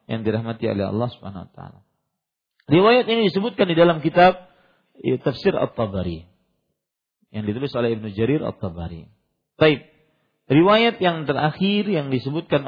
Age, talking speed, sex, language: 50-69, 135 wpm, male, Malay